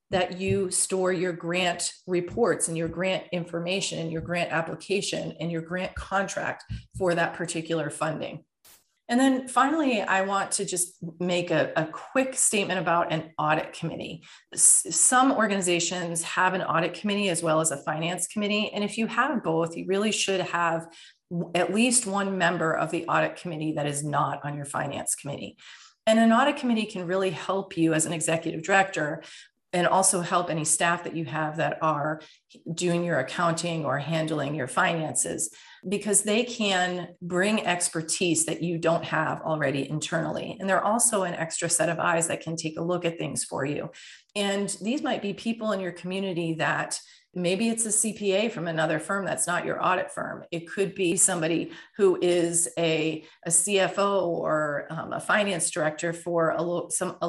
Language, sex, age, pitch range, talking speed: English, female, 40-59, 165-195 Hz, 180 wpm